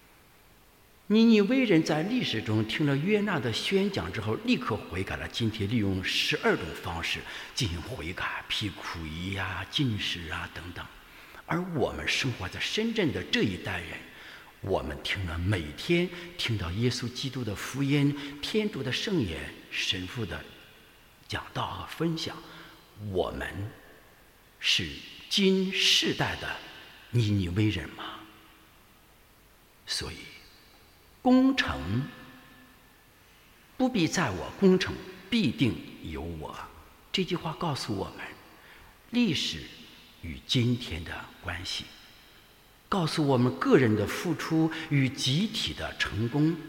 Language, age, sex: English, 60-79, male